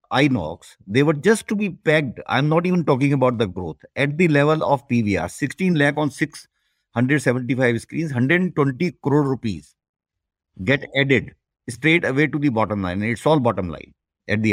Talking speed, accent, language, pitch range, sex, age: 180 wpm, Indian, English, 110-155 Hz, male, 50-69